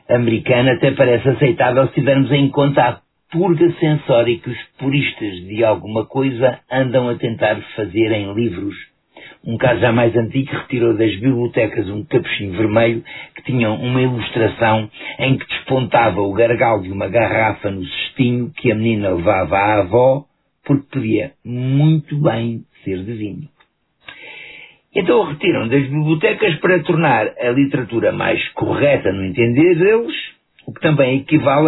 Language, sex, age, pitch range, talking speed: Portuguese, male, 50-69, 110-135 Hz, 150 wpm